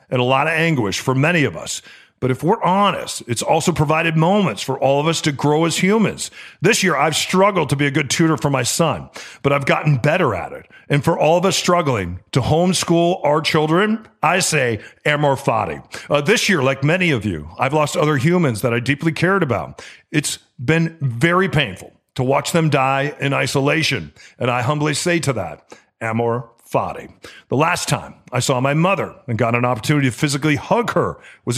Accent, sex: American, male